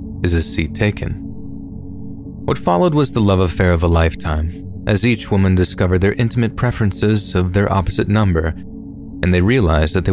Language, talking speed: English, 170 wpm